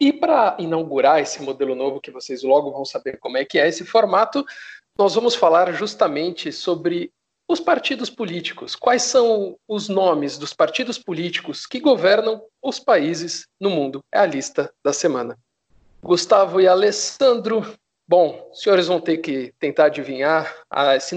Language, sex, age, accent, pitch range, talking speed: Portuguese, male, 50-69, Brazilian, 150-220 Hz, 160 wpm